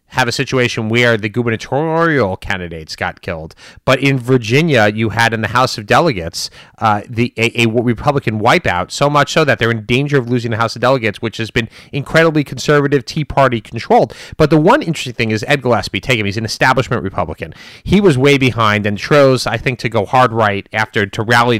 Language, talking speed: English, 210 wpm